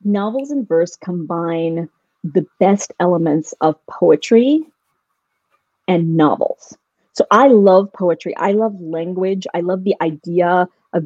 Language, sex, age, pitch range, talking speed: English, female, 40-59, 175-225 Hz, 125 wpm